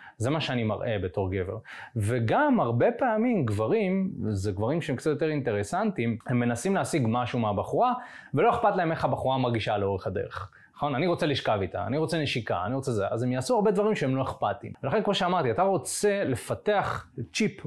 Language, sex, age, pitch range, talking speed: Hebrew, male, 20-39, 110-160 Hz, 185 wpm